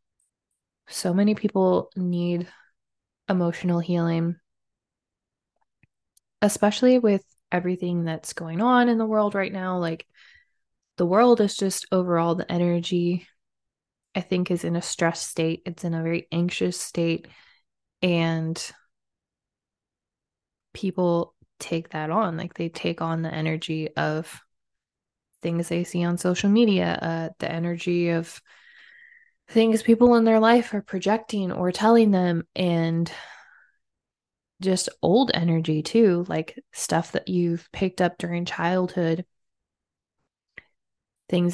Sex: female